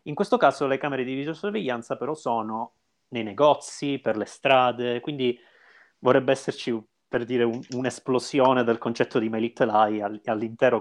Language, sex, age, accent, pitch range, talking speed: Italian, male, 30-49, native, 105-125 Hz, 155 wpm